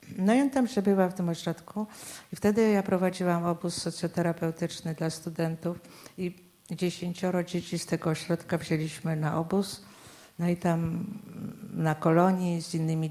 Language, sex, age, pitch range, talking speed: Polish, female, 50-69, 155-185 Hz, 145 wpm